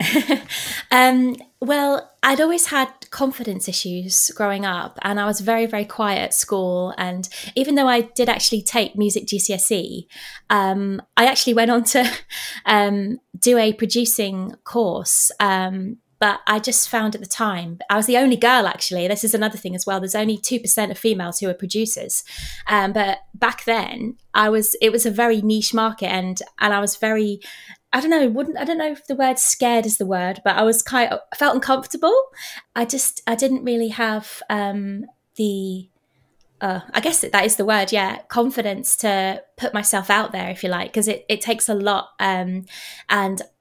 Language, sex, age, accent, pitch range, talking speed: English, female, 20-39, British, 195-235 Hz, 190 wpm